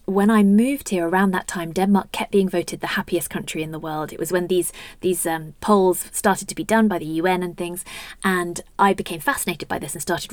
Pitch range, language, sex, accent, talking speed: 170-200 Hz, English, female, British, 240 wpm